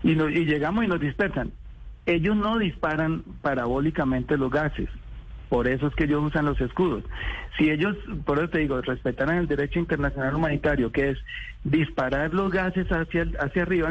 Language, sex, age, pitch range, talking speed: Spanish, male, 40-59, 135-170 Hz, 170 wpm